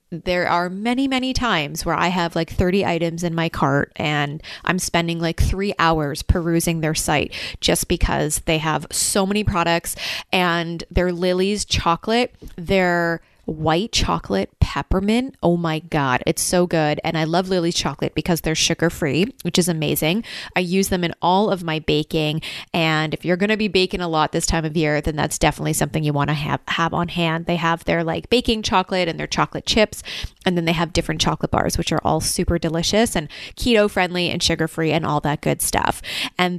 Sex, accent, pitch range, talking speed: female, American, 165-190 Hz, 195 wpm